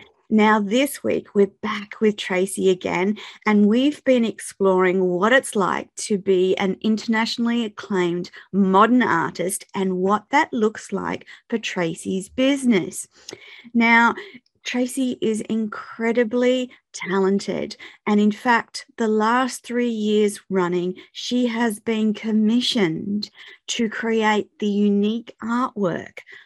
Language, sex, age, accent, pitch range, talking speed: English, female, 30-49, Australian, 195-230 Hz, 120 wpm